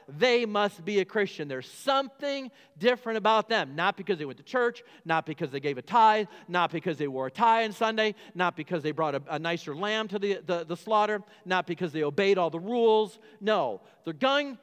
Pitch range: 145-200 Hz